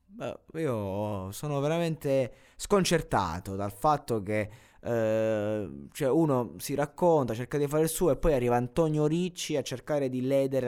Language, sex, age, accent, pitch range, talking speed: Italian, male, 20-39, native, 100-140 Hz, 150 wpm